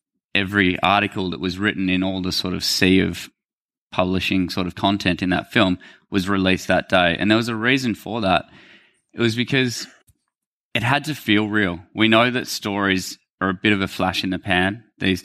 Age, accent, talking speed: 20-39, Australian, 205 wpm